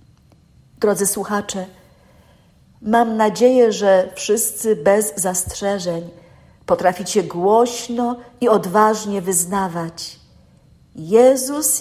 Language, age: Polish, 50-69